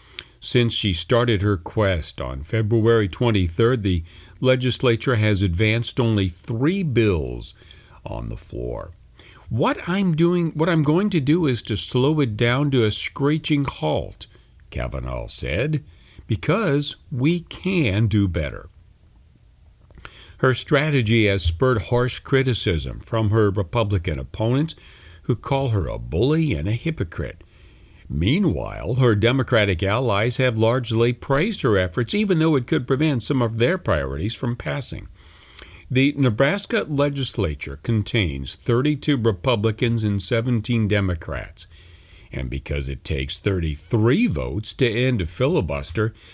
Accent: American